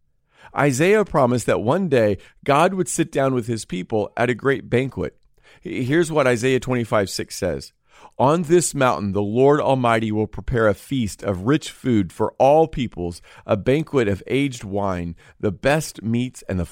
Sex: male